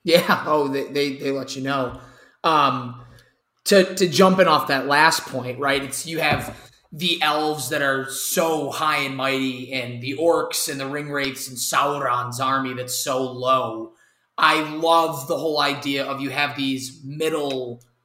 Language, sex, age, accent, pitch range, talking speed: English, male, 20-39, American, 130-160 Hz, 170 wpm